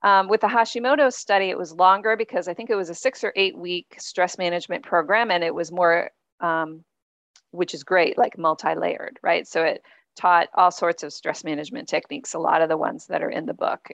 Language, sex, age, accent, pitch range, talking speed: English, female, 40-59, American, 165-190 Hz, 220 wpm